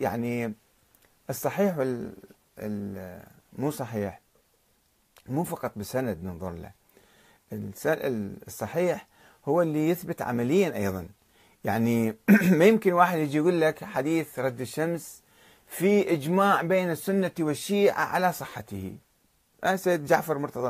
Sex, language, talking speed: male, Arabic, 110 wpm